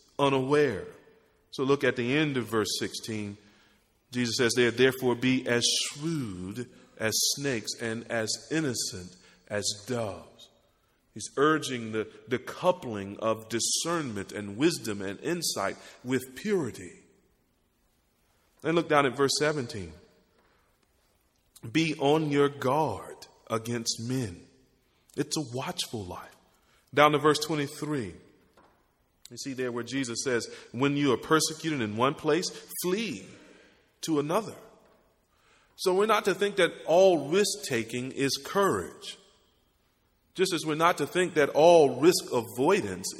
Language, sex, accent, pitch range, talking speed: English, male, American, 110-150 Hz, 125 wpm